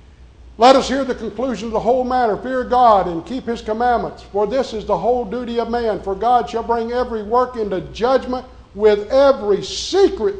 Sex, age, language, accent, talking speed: male, 60-79, English, American, 195 wpm